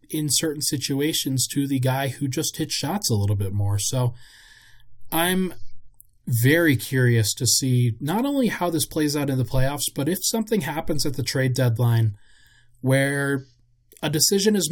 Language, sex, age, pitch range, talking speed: English, male, 20-39, 120-160 Hz, 165 wpm